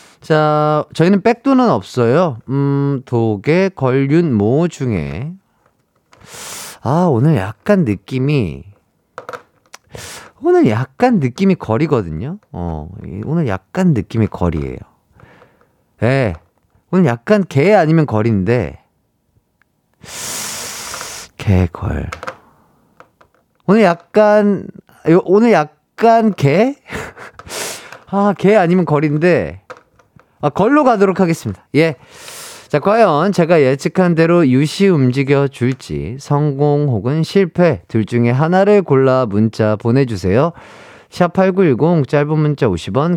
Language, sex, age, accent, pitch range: Korean, male, 40-59, native, 120-180 Hz